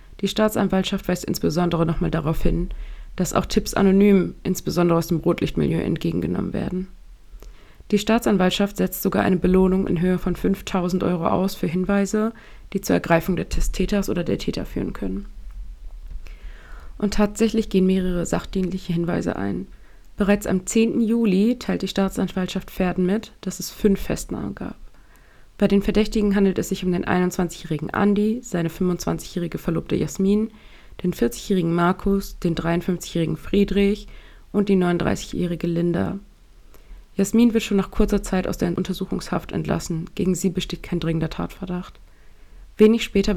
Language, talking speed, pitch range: German, 145 wpm, 170-200 Hz